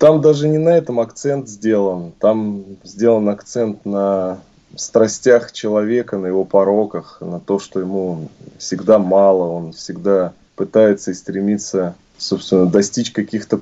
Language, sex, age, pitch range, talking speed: Russian, male, 20-39, 90-105 Hz, 130 wpm